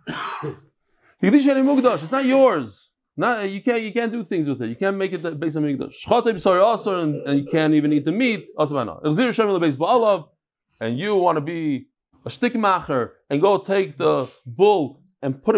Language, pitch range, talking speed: English, 140-200 Hz, 155 wpm